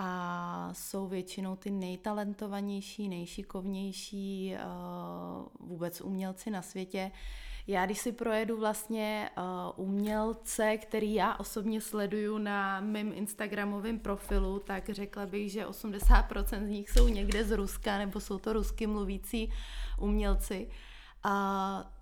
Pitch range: 195-220 Hz